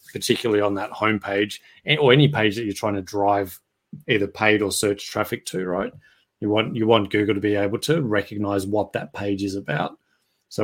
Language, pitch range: English, 100-115 Hz